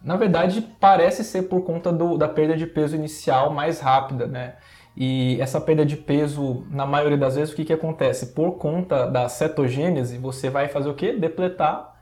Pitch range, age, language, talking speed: 140-170 Hz, 20-39, Portuguese, 185 wpm